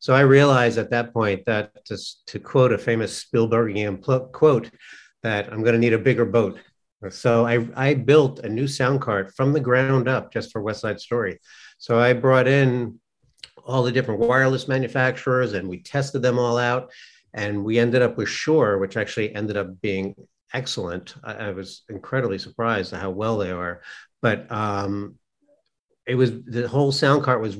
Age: 50-69